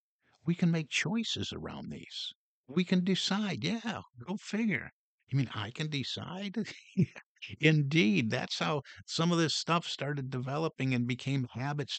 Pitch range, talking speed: 100-145 Hz, 145 wpm